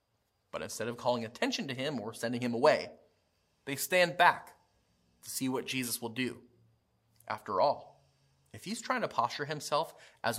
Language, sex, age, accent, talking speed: English, male, 30-49, American, 170 wpm